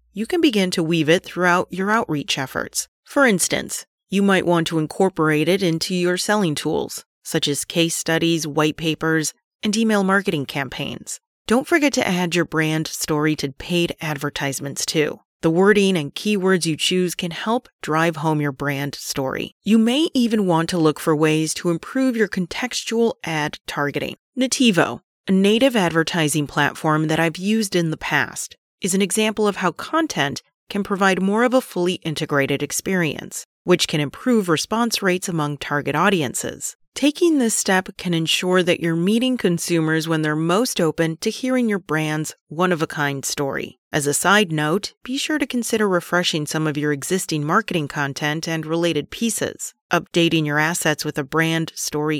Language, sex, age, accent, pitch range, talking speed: English, female, 30-49, American, 155-205 Hz, 170 wpm